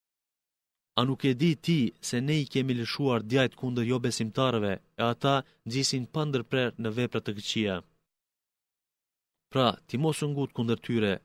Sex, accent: male, Turkish